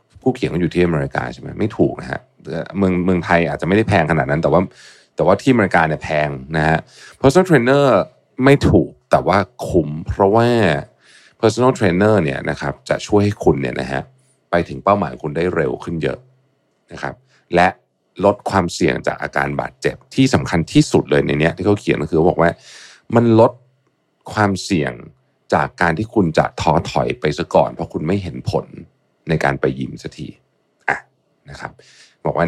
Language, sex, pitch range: Thai, male, 75-110 Hz